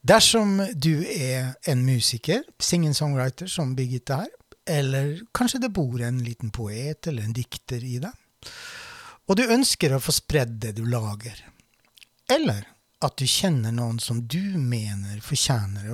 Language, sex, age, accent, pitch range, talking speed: English, male, 60-79, Swedish, 115-175 Hz, 160 wpm